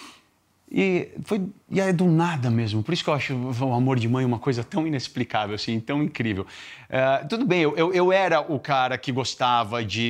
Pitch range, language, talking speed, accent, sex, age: 120-175 Hz, Portuguese, 200 wpm, Brazilian, male, 30-49